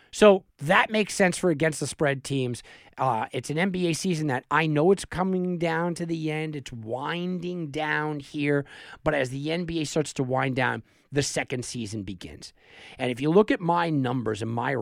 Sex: male